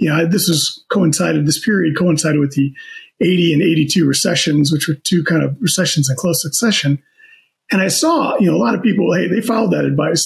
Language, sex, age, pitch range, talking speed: English, male, 40-59, 150-195 Hz, 215 wpm